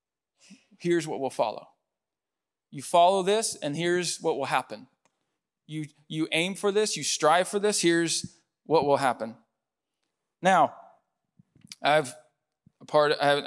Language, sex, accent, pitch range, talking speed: English, male, American, 140-170 Hz, 135 wpm